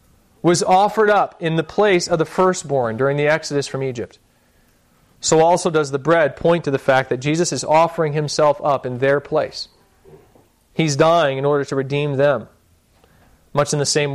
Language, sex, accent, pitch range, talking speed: English, male, American, 135-165 Hz, 180 wpm